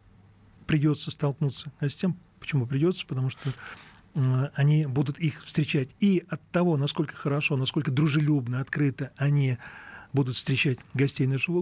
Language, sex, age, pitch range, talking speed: Russian, male, 40-59, 130-160 Hz, 135 wpm